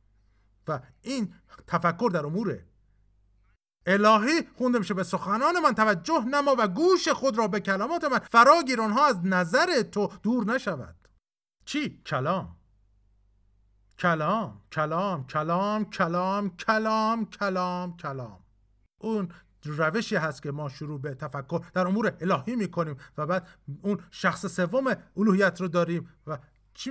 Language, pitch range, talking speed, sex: Persian, 150-215 Hz, 125 wpm, male